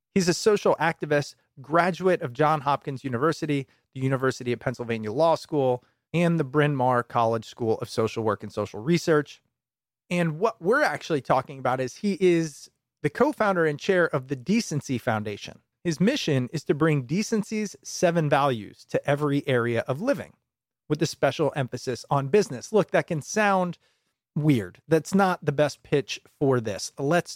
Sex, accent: male, American